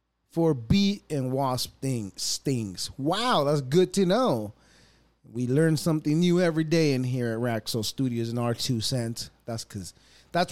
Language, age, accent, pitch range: English, 30-49, American, 110-160 Hz